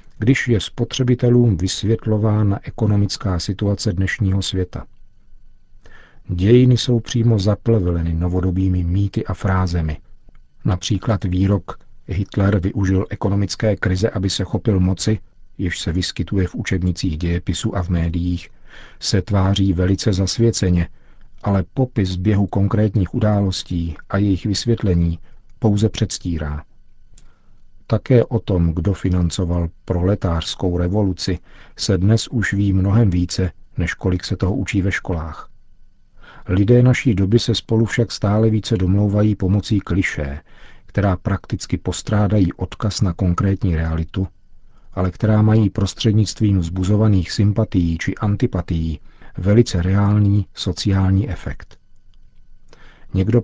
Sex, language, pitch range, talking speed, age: male, Czech, 90-110 Hz, 115 wpm, 50-69